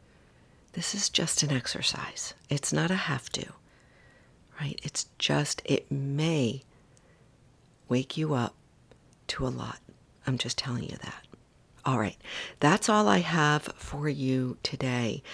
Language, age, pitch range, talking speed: English, 50-69, 125-150 Hz, 135 wpm